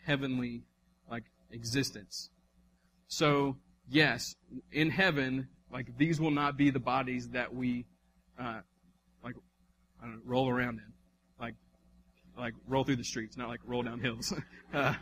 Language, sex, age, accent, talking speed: English, male, 30-49, American, 145 wpm